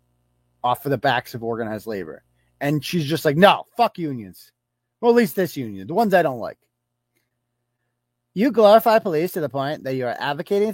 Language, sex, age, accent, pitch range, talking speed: English, male, 40-59, American, 140-235 Hz, 190 wpm